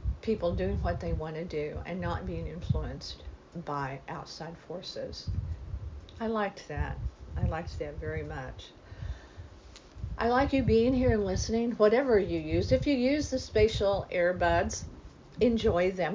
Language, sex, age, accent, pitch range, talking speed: English, female, 50-69, American, 150-225 Hz, 150 wpm